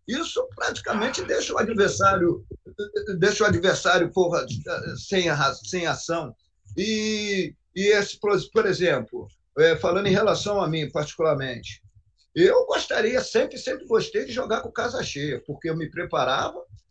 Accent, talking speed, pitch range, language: Brazilian, 135 wpm, 145-210 Hz, Portuguese